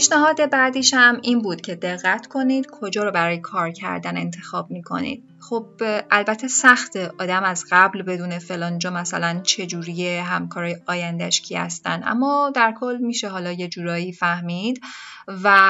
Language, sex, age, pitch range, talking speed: Persian, female, 10-29, 180-245 Hz, 150 wpm